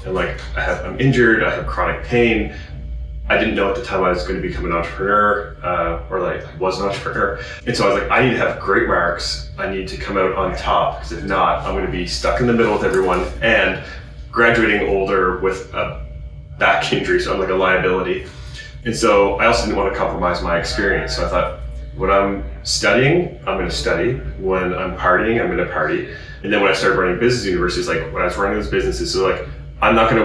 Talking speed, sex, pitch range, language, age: 230 wpm, male, 75-100 Hz, English, 30-49